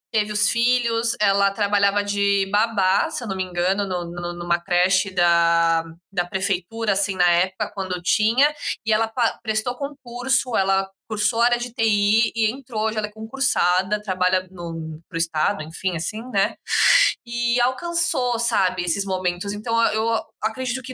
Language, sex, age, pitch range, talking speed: Portuguese, female, 20-39, 185-230 Hz, 160 wpm